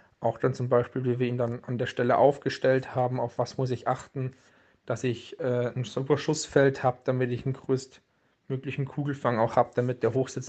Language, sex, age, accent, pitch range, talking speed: German, male, 40-59, German, 120-135 Hz, 200 wpm